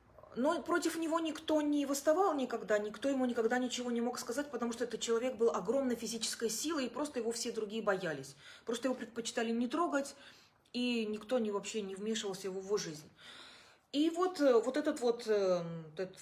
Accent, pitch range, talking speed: native, 200-255 Hz, 175 wpm